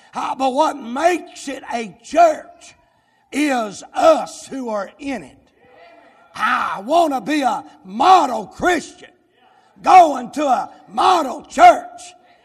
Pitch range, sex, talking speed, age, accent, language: 250-320 Hz, male, 115 wpm, 60-79, American, English